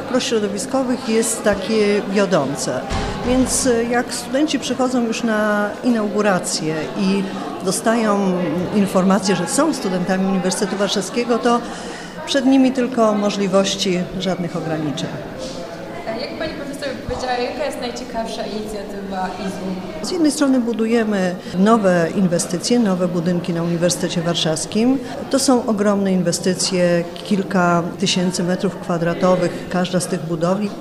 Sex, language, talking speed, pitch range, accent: female, Polish, 105 wpm, 185-240 Hz, native